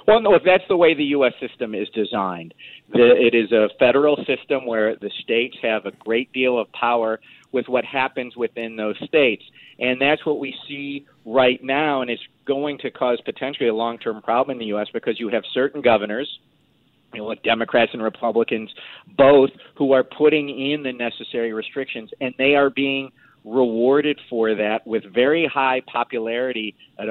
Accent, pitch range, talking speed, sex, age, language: American, 110-140 Hz, 170 wpm, male, 40-59, English